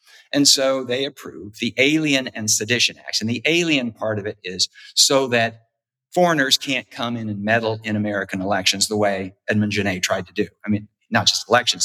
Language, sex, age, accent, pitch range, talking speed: English, male, 50-69, American, 110-155 Hz, 200 wpm